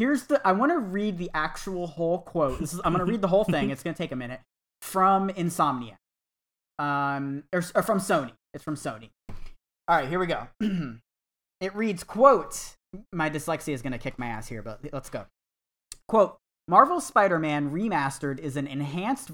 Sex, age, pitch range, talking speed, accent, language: male, 20-39, 150-205 Hz, 190 wpm, American, English